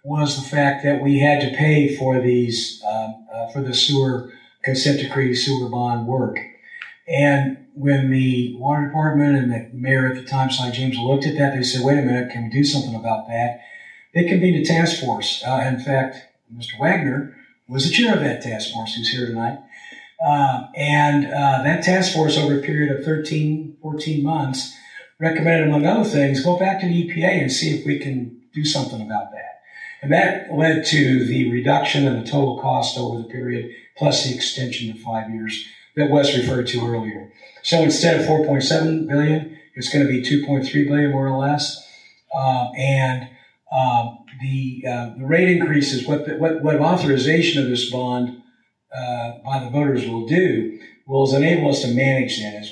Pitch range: 125-150 Hz